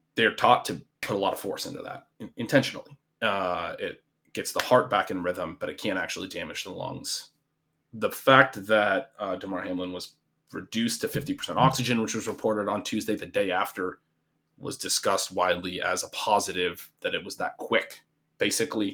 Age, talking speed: 30-49, 180 wpm